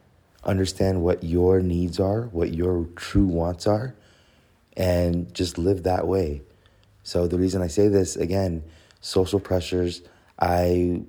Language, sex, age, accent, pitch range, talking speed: English, male, 30-49, American, 80-90 Hz, 135 wpm